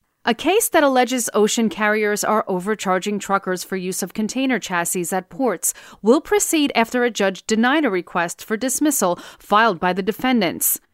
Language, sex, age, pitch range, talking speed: English, female, 40-59, 185-235 Hz, 165 wpm